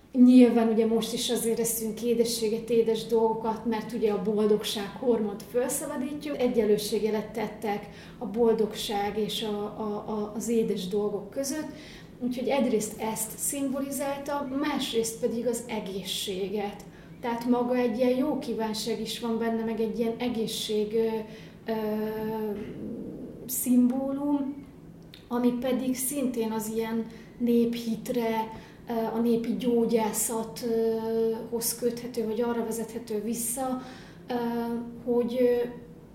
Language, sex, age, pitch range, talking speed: Hungarian, female, 30-49, 220-240 Hz, 105 wpm